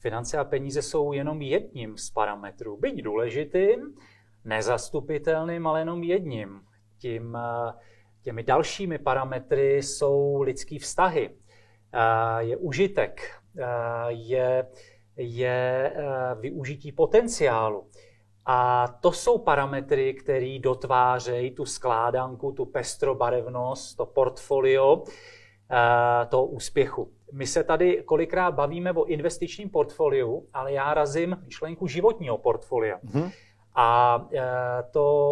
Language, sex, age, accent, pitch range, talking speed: Czech, male, 40-59, native, 120-165 Hz, 95 wpm